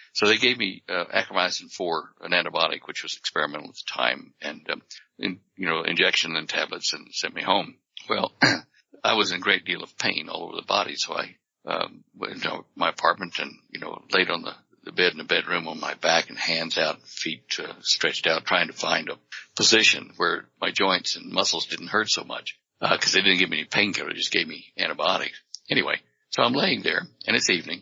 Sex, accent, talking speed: male, American, 220 wpm